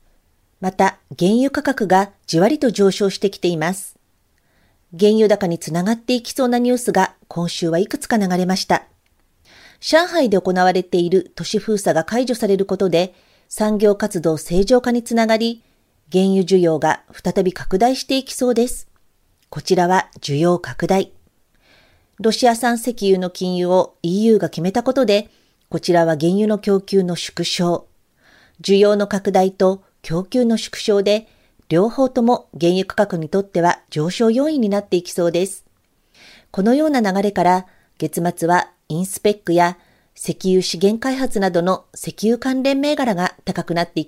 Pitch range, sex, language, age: 175-225 Hz, female, Japanese, 40-59